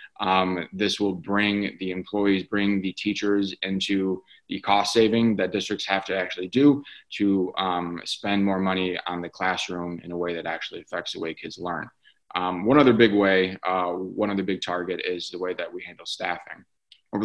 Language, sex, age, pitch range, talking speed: English, male, 20-39, 95-105 Hz, 190 wpm